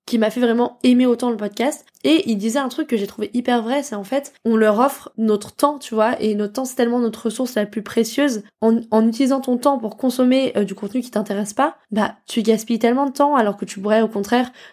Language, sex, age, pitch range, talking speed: French, female, 10-29, 215-250 Hz, 255 wpm